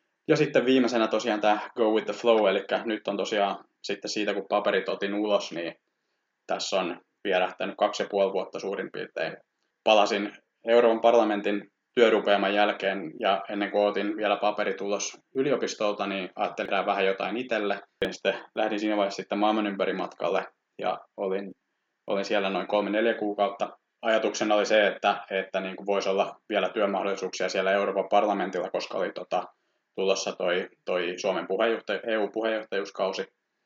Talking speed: 145 wpm